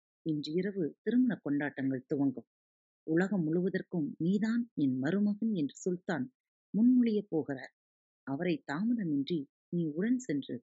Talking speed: 100 wpm